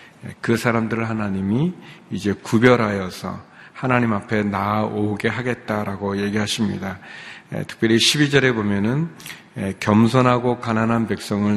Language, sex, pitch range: Korean, male, 105-125 Hz